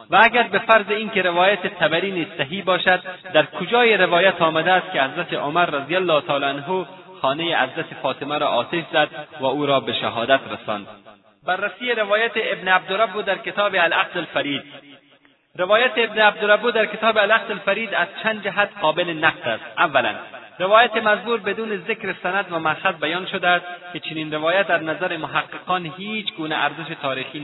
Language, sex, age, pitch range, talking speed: Persian, male, 30-49, 150-195 Hz, 160 wpm